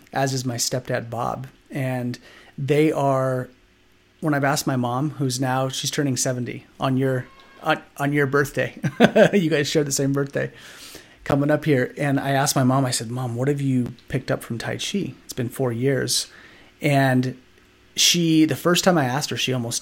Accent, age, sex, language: American, 30-49, male, English